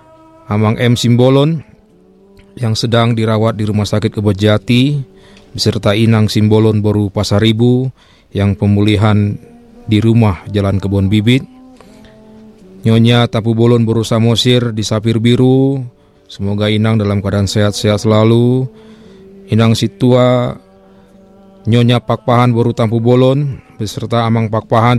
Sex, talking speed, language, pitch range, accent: male, 115 wpm, Indonesian, 110-130 Hz, native